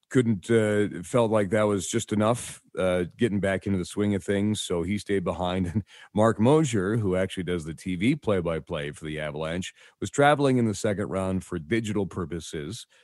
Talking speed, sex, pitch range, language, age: 200 wpm, male, 90-115 Hz, English, 40-59